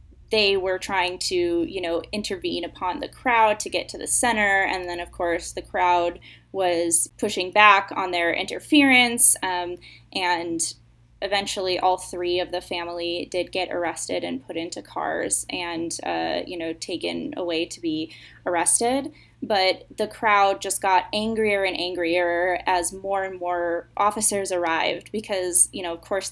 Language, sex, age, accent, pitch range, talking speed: English, female, 10-29, American, 175-205 Hz, 160 wpm